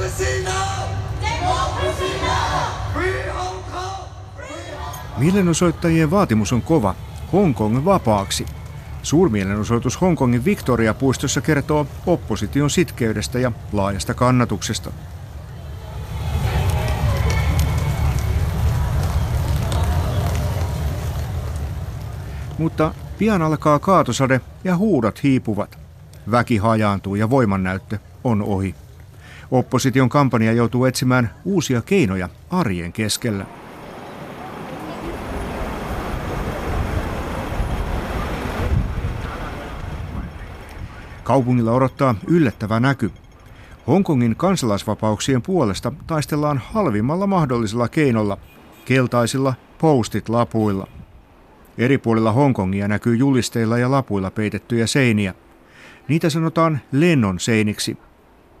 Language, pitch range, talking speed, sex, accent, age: Finnish, 100-135 Hz, 65 wpm, male, native, 60-79